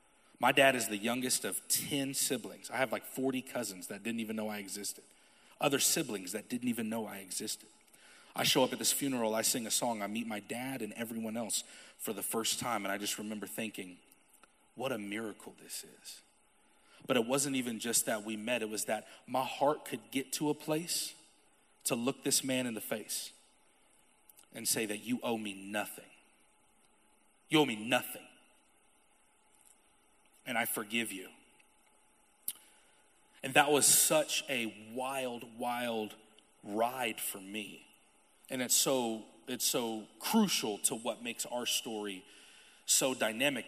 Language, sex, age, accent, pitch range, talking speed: English, male, 30-49, American, 110-140 Hz, 165 wpm